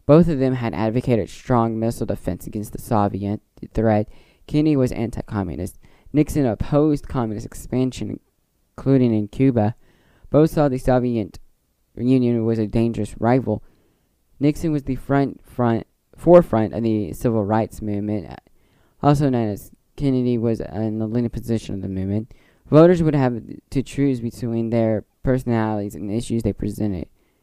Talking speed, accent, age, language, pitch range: 145 wpm, American, 10-29, English, 105-130 Hz